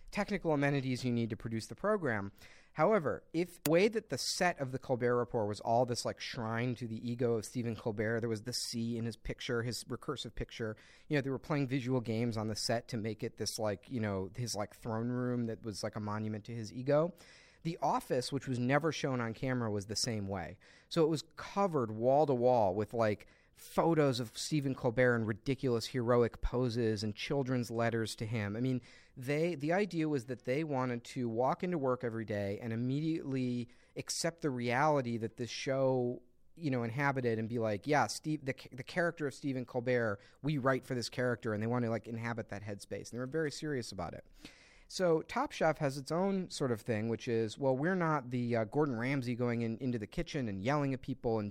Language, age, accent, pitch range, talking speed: English, 40-59, American, 115-140 Hz, 220 wpm